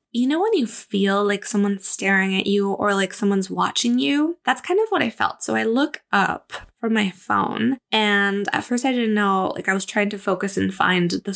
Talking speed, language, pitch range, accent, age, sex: 225 wpm, English, 195-245 Hz, American, 10-29, female